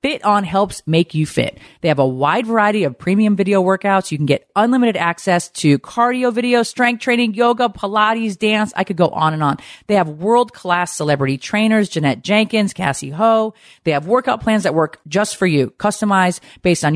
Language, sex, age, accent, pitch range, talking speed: English, female, 40-59, American, 150-210 Hz, 195 wpm